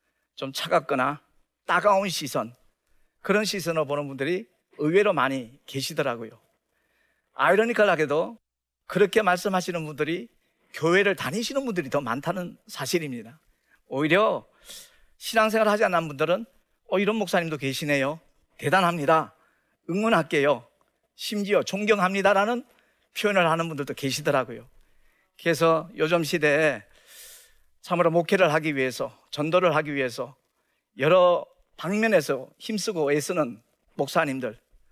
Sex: male